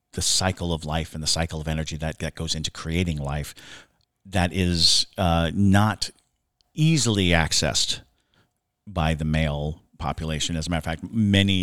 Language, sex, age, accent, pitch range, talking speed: English, male, 40-59, American, 80-100 Hz, 160 wpm